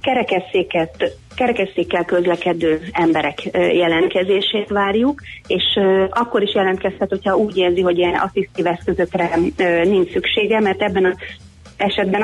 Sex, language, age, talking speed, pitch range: female, Hungarian, 30-49, 120 wpm, 170-195 Hz